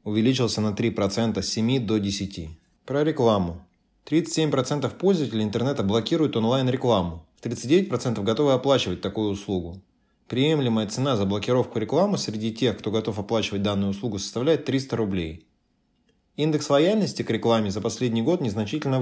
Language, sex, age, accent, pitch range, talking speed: Russian, male, 20-39, native, 100-130 Hz, 135 wpm